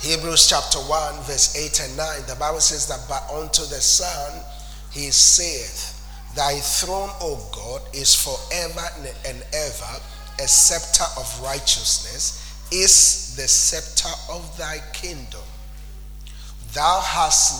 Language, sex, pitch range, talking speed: English, male, 115-165 Hz, 125 wpm